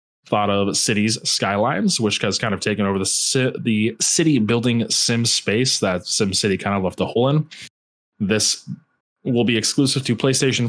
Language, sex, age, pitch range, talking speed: English, male, 20-39, 105-130 Hz, 170 wpm